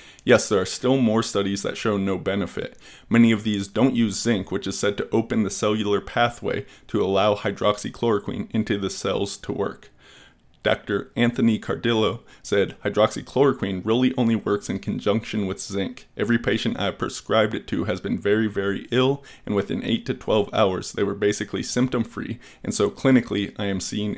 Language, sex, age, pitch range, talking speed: English, male, 20-39, 100-115 Hz, 180 wpm